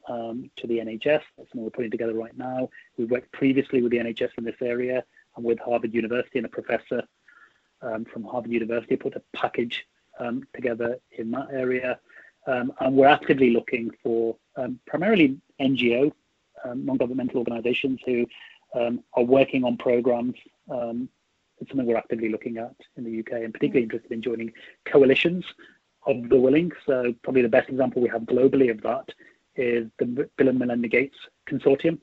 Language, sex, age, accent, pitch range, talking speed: English, male, 30-49, British, 120-130 Hz, 175 wpm